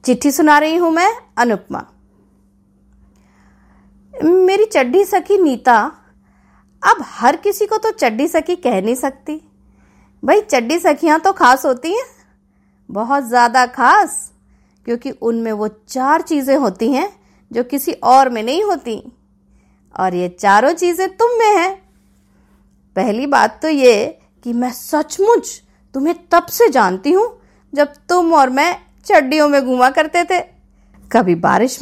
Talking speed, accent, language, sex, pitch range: 140 wpm, native, Hindi, female, 200-330 Hz